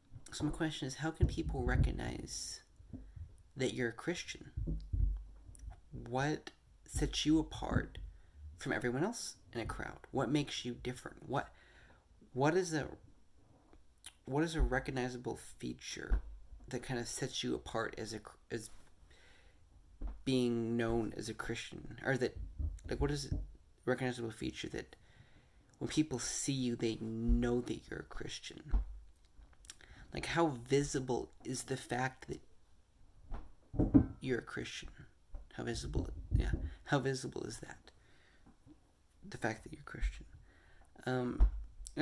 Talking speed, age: 130 wpm, 30-49